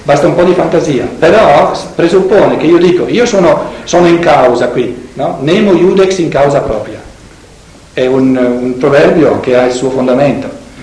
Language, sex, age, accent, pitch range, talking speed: Italian, male, 50-69, native, 120-160 Hz, 170 wpm